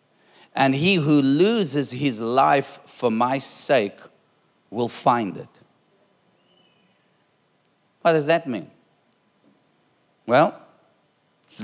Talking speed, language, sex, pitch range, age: 95 wpm, English, male, 135-155 Hz, 40-59